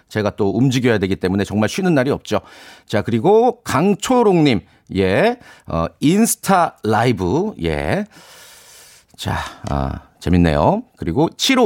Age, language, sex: 40-59, Korean, male